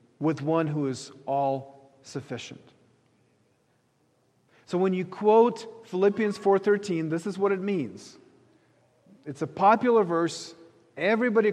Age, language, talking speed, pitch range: 40-59, English, 115 wpm, 135-180 Hz